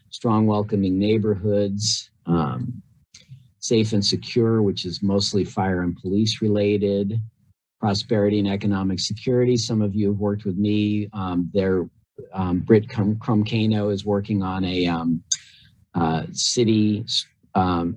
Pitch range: 95-110 Hz